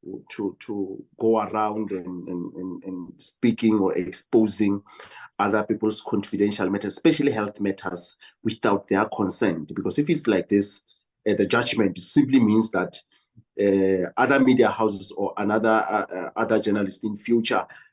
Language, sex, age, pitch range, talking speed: English, male, 30-49, 100-115 Hz, 145 wpm